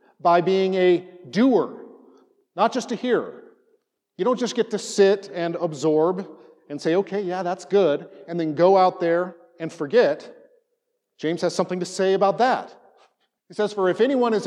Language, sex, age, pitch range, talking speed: English, male, 50-69, 165-220 Hz, 175 wpm